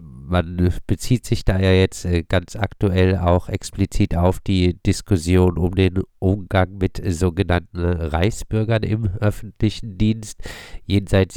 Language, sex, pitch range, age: German, male, 90-105 Hz, 50-69